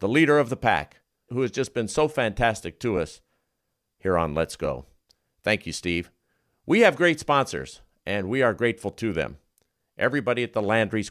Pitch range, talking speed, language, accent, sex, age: 105-145 Hz, 185 wpm, English, American, male, 50-69